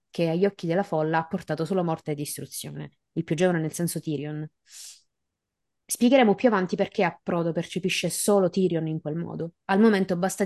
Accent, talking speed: native, 185 wpm